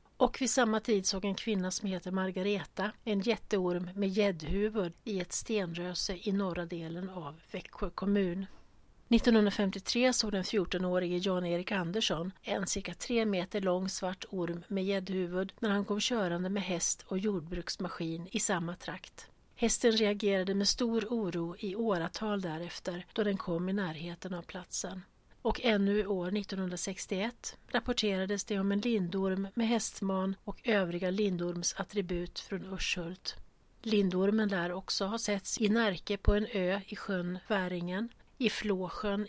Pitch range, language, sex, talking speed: 180-215 Hz, Swedish, female, 145 wpm